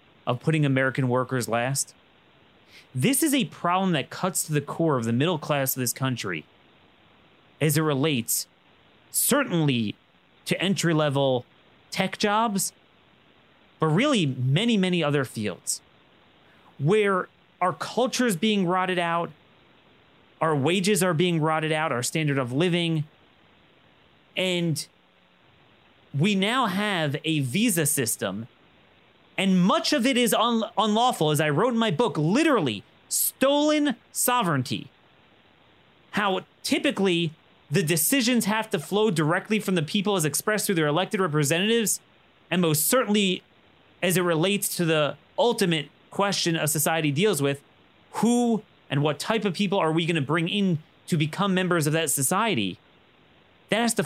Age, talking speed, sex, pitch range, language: 30-49, 140 wpm, male, 150-205 Hz, English